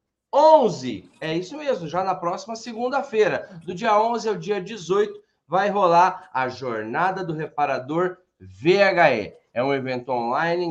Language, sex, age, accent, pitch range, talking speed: Portuguese, male, 20-39, Brazilian, 175-235 Hz, 140 wpm